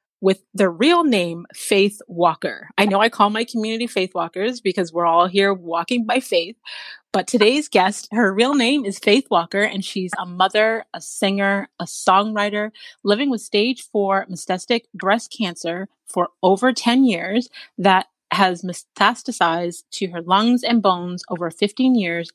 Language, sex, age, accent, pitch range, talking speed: English, female, 30-49, American, 180-230 Hz, 160 wpm